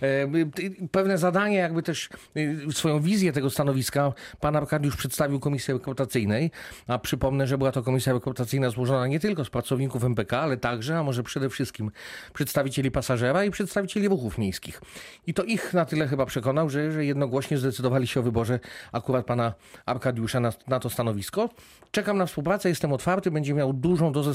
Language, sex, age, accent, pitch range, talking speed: Polish, male, 40-59, native, 135-165 Hz, 170 wpm